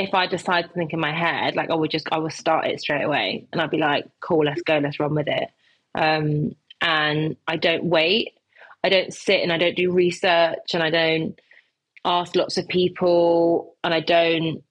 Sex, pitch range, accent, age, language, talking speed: female, 155-175 Hz, British, 20-39, English, 210 wpm